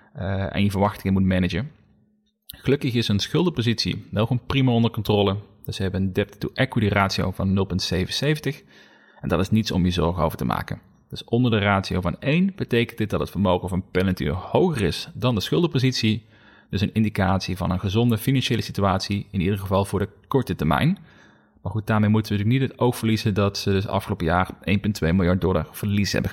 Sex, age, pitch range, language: male, 30-49, 95-125 Hz, Dutch